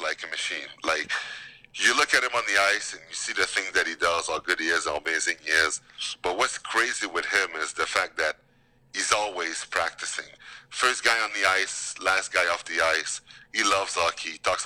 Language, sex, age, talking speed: English, male, 40-59, 220 wpm